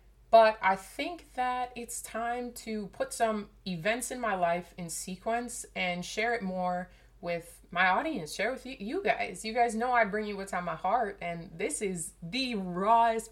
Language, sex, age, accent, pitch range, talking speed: English, female, 20-39, American, 180-230 Hz, 190 wpm